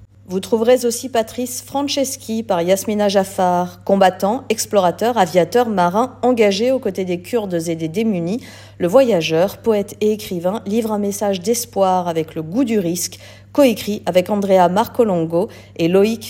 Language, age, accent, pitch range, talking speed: French, 50-69, French, 170-225 Hz, 145 wpm